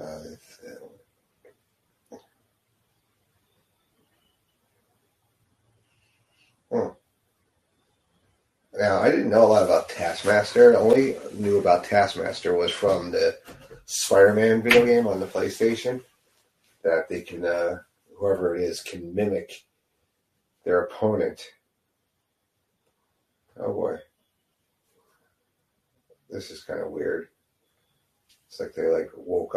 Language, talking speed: English, 100 wpm